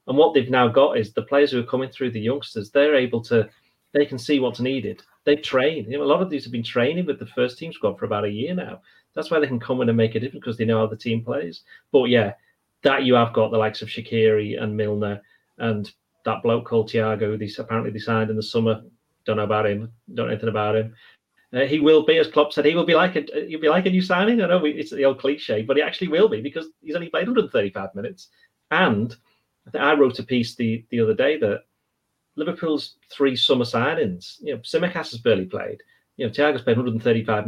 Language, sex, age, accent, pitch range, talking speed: English, male, 30-49, British, 115-145 Hz, 245 wpm